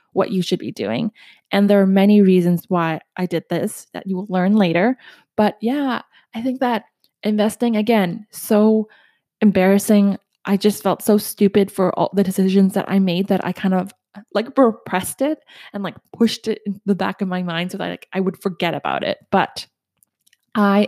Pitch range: 185-220 Hz